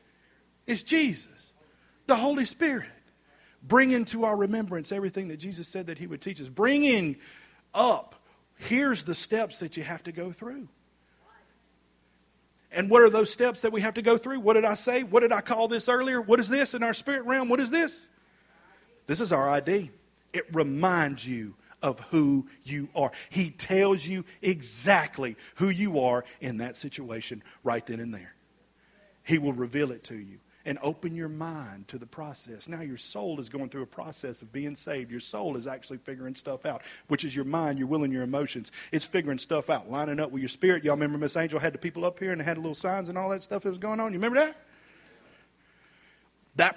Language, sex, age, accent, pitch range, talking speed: English, male, 40-59, American, 135-200 Hz, 205 wpm